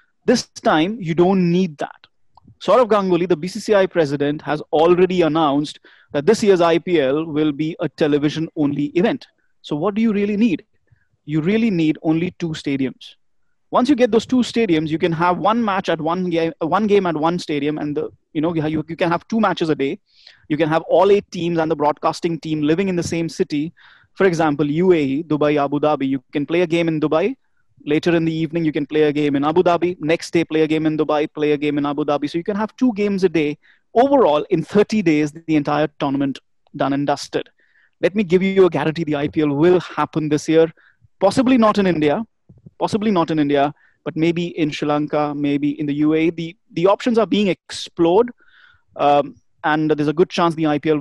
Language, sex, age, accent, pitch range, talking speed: English, male, 30-49, Indian, 150-180 Hz, 215 wpm